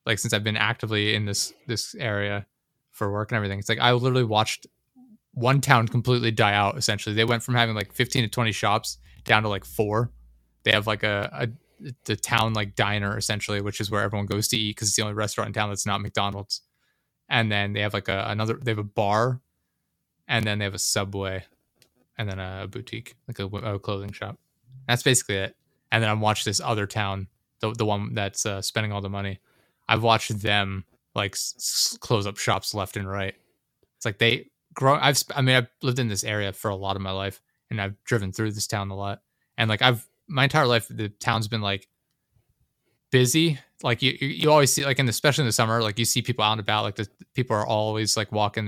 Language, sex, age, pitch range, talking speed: English, male, 20-39, 100-120 Hz, 225 wpm